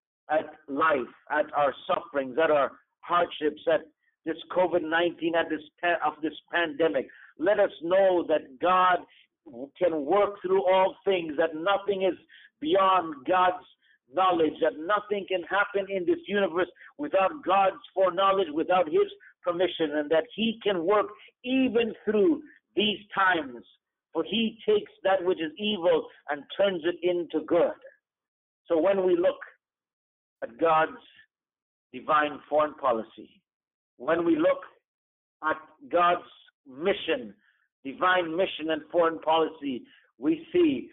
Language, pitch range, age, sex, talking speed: English, 160-210 Hz, 50-69, male, 130 wpm